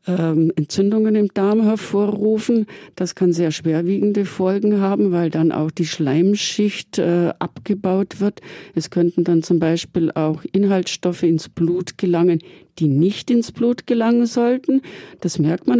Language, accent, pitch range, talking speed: German, German, 165-200 Hz, 145 wpm